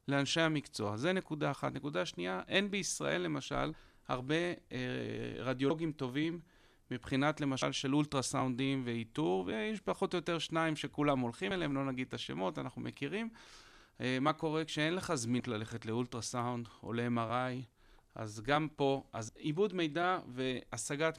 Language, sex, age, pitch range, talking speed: Hebrew, male, 30-49, 120-150 Hz, 140 wpm